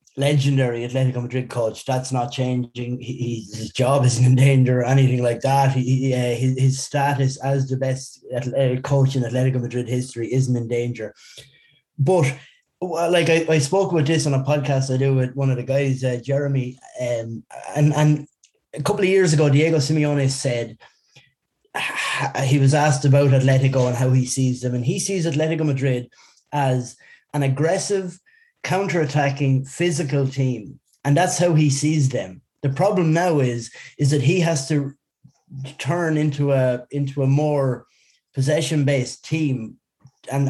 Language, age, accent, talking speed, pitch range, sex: English, 20-39, Irish, 150 wpm, 130-155 Hz, male